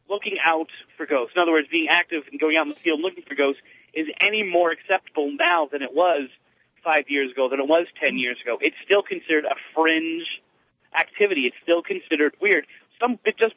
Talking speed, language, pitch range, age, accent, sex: 205 wpm, English, 155-215 Hz, 30-49, American, male